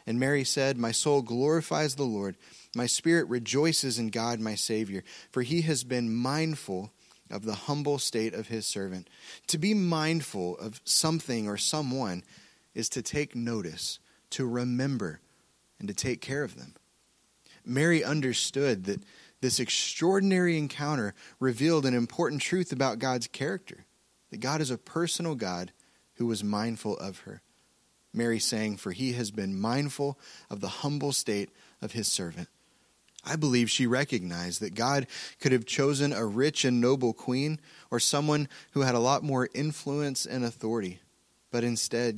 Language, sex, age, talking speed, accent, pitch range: English, male, 30-49, 155 wpm, American, 115-150 Hz